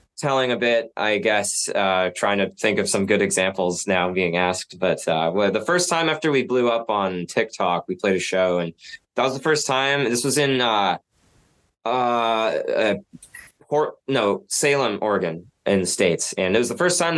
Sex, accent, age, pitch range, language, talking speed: male, American, 20-39, 90-120 Hz, English, 200 wpm